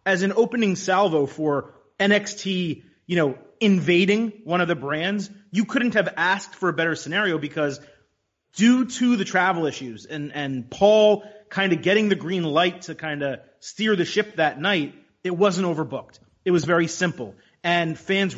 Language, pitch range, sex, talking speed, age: English, 155-200 Hz, male, 175 wpm, 30-49